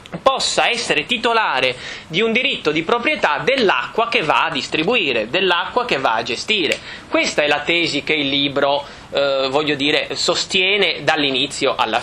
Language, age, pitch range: Italian, 30-49, 135-195 Hz